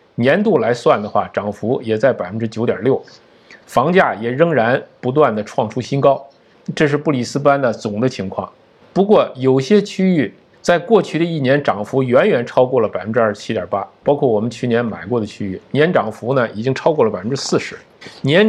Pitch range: 120-180 Hz